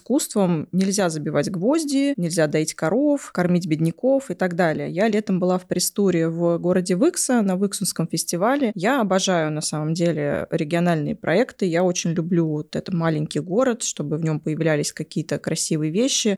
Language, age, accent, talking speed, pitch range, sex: Russian, 20-39, native, 160 wpm, 170-220 Hz, female